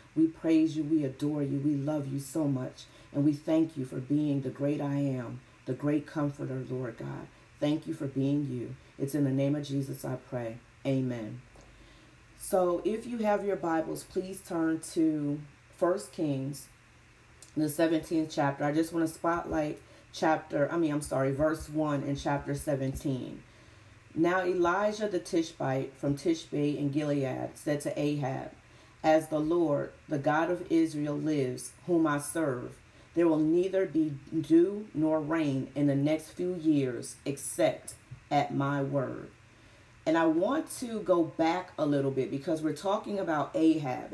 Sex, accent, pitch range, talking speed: female, American, 140-165 Hz, 165 wpm